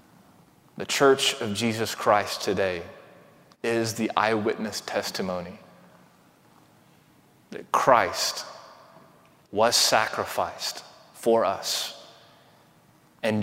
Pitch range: 110-145 Hz